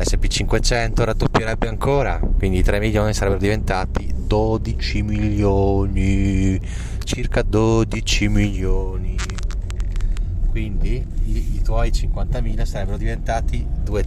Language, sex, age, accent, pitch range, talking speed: Italian, male, 30-49, native, 85-105 Hz, 90 wpm